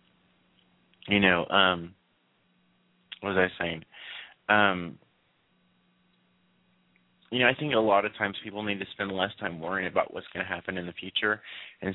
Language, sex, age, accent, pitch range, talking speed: English, male, 30-49, American, 85-100 Hz, 160 wpm